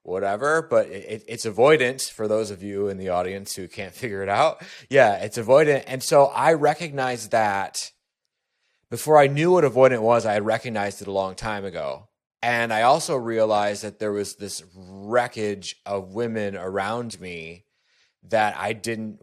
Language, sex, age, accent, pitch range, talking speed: English, male, 20-39, American, 100-125 Hz, 170 wpm